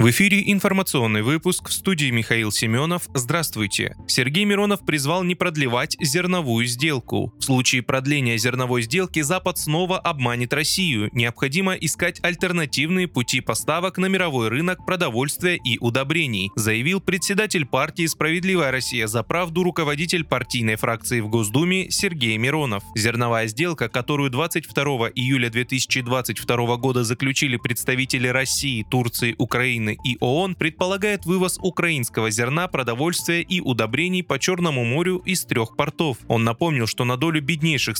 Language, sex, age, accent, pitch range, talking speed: Russian, male, 20-39, native, 120-175 Hz, 130 wpm